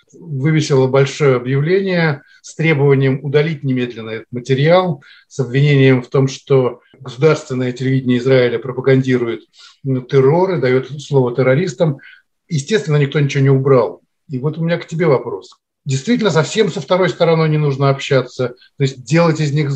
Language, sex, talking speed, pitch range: Russian, male, 145 wpm, 135-165 Hz